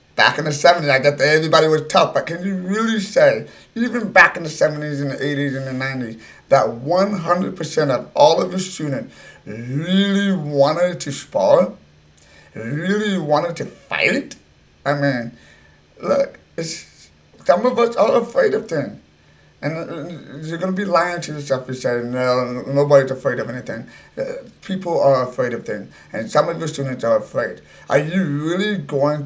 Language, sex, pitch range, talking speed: English, male, 125-180 Hz, 170 wpm